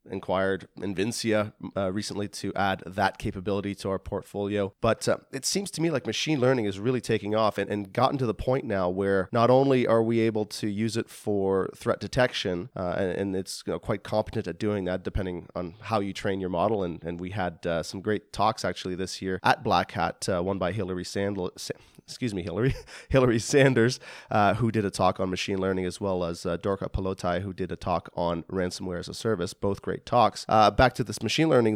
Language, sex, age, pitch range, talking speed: English, male, 30-49, 95-115 Hz, 225 wpm